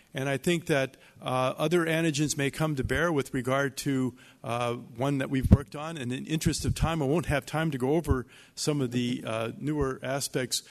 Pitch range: 125-155 Hz